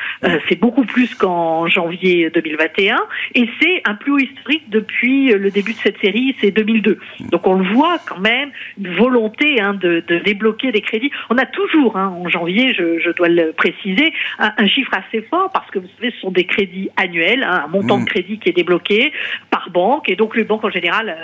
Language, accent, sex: French, French, female